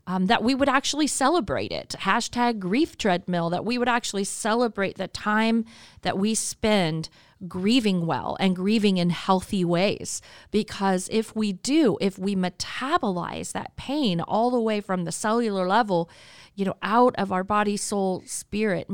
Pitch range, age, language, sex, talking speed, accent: 180-225 Hz, 40-59, English, female, 160 wpm, American